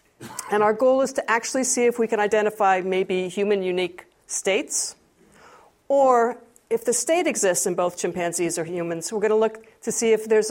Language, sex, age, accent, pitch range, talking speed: English, female, 50-69, American, 185-240 Hz, 185 wpm